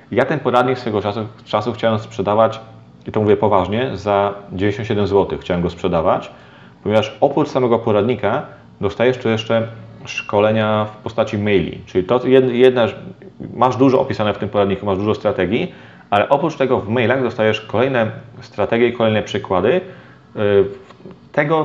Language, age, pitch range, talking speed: Polish, 30-49, 100-125 Hz, 145 wpm